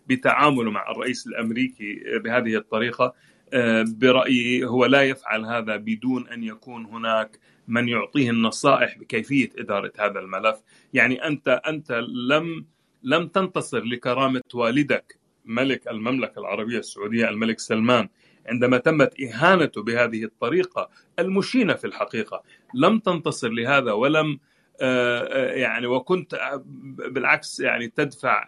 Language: Arabic